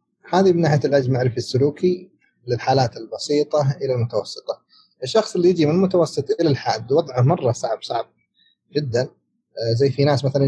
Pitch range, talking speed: 125-160 Hz, 145 wpm